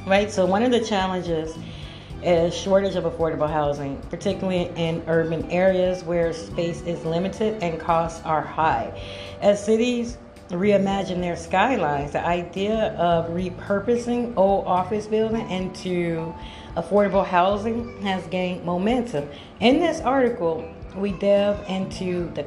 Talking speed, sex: 130 wpm, female